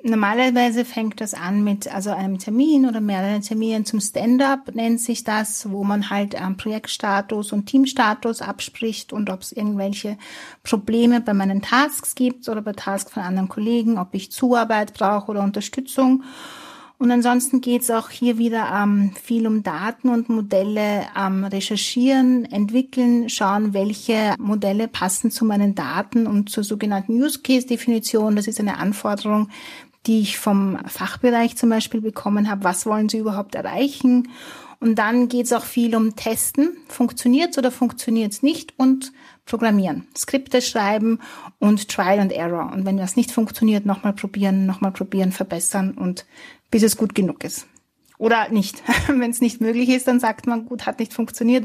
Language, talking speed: German, 165 wpm